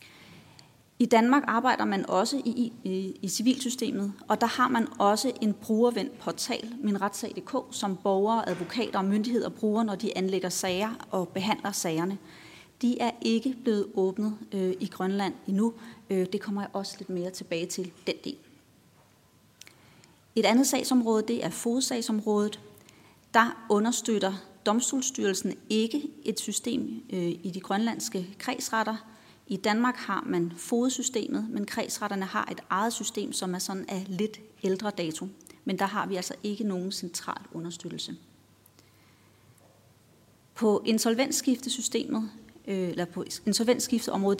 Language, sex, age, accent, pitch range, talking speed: Danish, female, 30-49, native, 190-230 Hz, 135 wpm